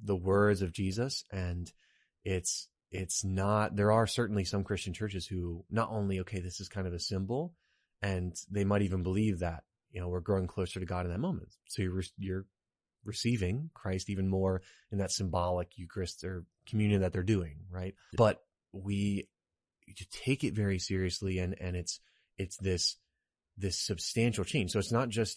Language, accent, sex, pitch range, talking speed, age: English, American, male, 90-105 Hz, 180 wpm, 20-39